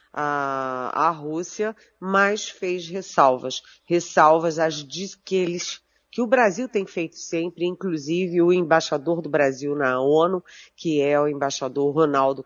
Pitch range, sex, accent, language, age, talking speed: 150-200 Hz, female, Brazilian, Portuguese, 40-59, 130 wpm